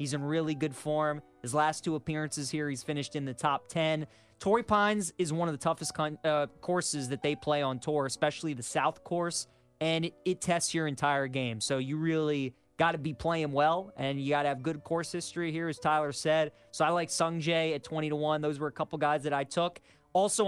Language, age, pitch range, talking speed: English, 20-39, 145-170 Hz, 230 wpm